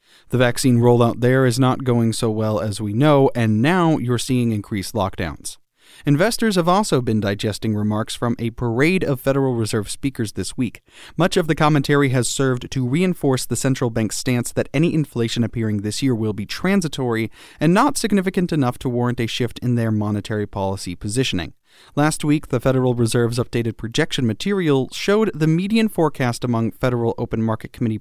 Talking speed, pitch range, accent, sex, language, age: 180 wpm, 115-150 Hz, American, male, English, 30-49